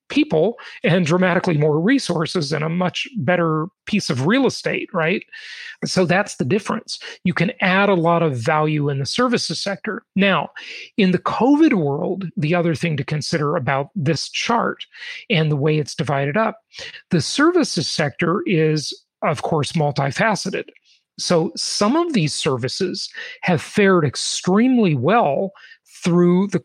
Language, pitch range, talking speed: English, 155-210 Hz, 150 wpm